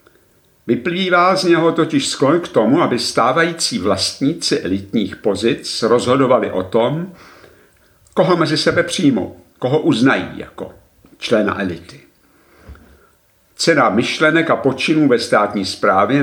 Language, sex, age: Czech, male, 60-79